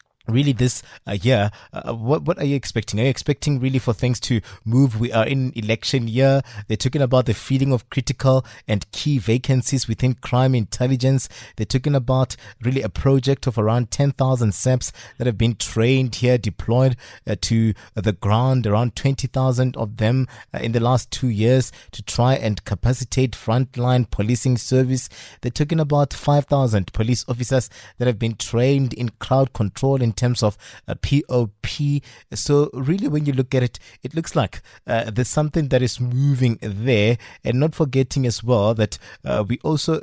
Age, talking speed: 20-39, 175 wpm